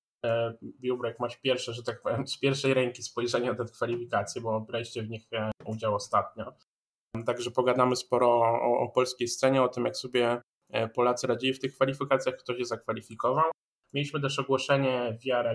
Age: 20-39